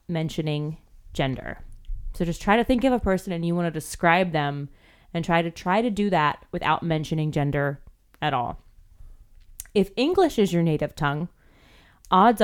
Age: 20-39